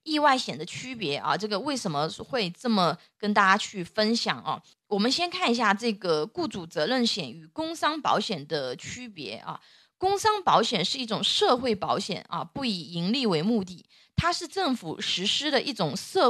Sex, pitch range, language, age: female, 195-270 Hz, Chinese, 20-39